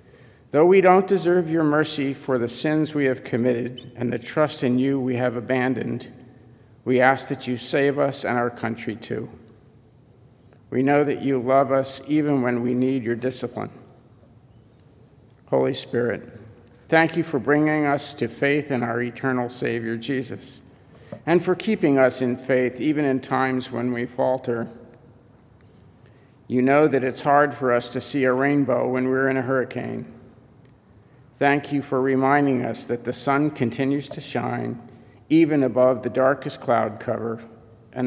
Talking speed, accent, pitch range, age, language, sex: 160 wpm, American, 120-135 Hz, 50-69, English, male